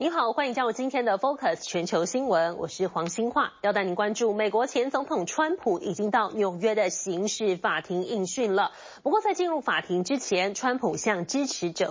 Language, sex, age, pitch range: Chinese, female, 30-49, 190-275 Hz